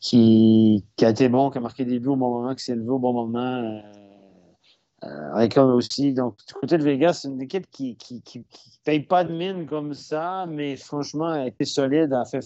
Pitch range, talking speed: 120-145 Hz, 240 wpm